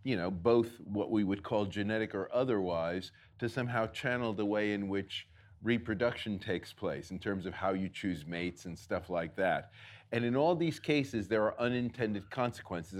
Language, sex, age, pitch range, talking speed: English, male, 40-59, 100-125 Hz, 185 wpm